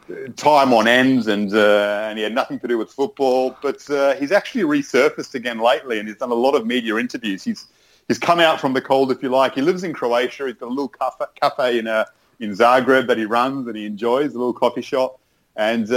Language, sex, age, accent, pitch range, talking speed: English, male, 30-49, Australian, 105-130 Hz, 235 wpm